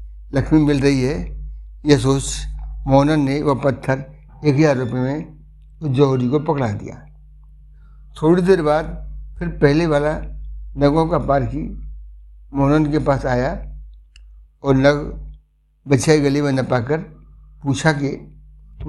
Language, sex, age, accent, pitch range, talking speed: Hindi, male, 60-79, native, 130-160 Hz, 135 wpm